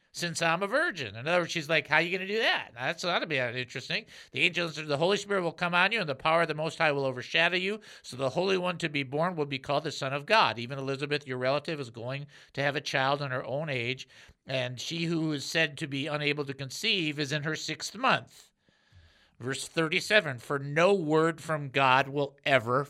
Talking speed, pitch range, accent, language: 245 wpm, 135-175 Hz, American, English